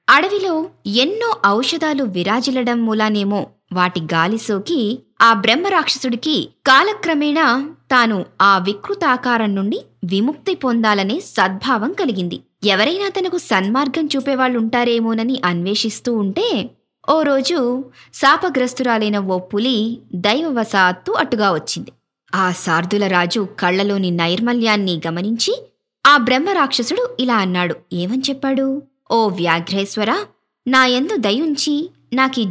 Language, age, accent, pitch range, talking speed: Telugu, 20-39, native, 195-285 Hz, 90 wpm